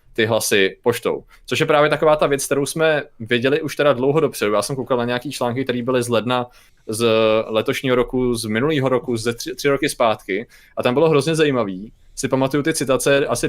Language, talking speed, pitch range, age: Czech, 210 wpm, 120-145 Hz, 20-39